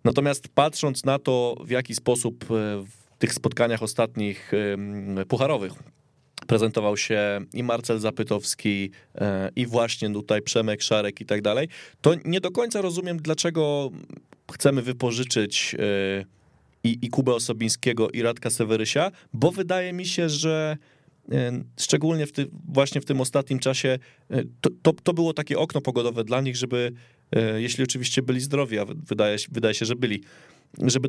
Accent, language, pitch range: native, Polish, 110-140 Hz